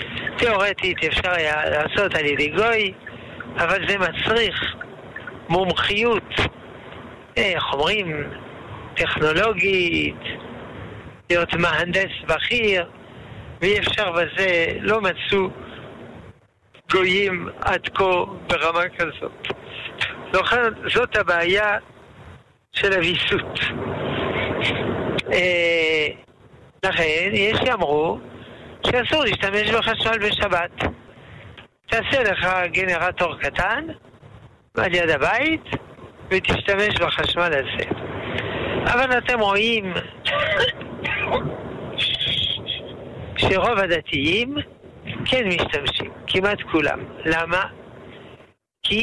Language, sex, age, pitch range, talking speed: Hebrew, male, 60-79, 170-210 Hz, 75 wpm